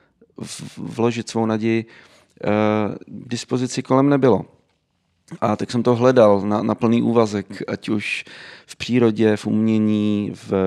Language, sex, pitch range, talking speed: Slovak, male, 100-120 Hz, 130 wpm